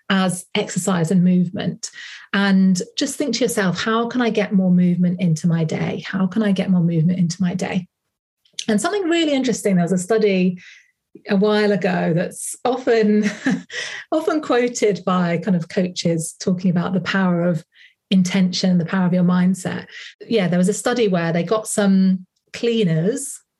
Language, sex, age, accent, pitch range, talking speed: English, female, 30-49, British, 180-230 Hz, 170 wpm